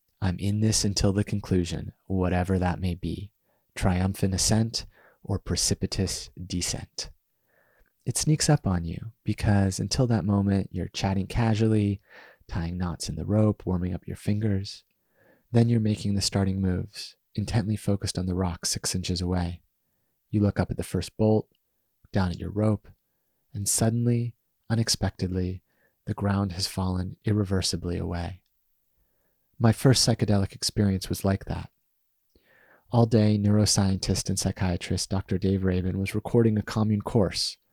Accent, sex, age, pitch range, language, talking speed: American, male, 30-49, 95-110 Hz, English, 145 wpm